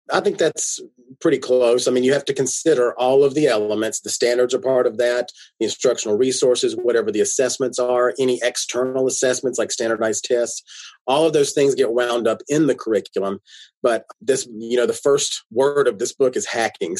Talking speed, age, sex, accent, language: 200 wpm, 30-49, male, American, English